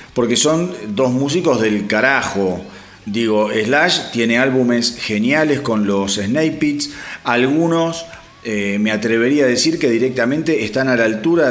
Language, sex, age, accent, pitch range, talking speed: Spanish, male, 40-59, Argentinian, 115-155 Hz, 140 wpm